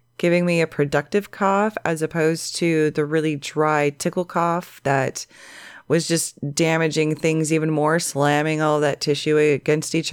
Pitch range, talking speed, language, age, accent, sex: 150-210 Hz, 155 wpm, English, 20-39, American, female